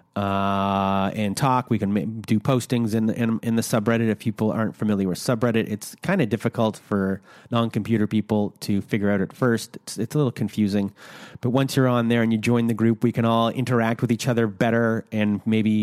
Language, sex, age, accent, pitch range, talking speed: English, male, 30-49, American, 105-120 Hz, 210 wpm